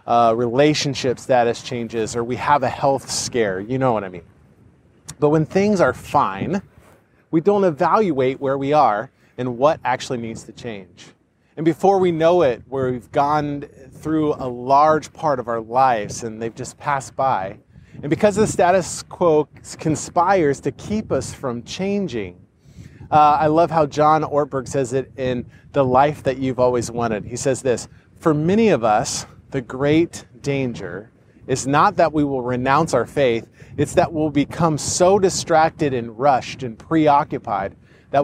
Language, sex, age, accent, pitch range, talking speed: English, male, 30-49, American, 120-155 Hz, 170 wpm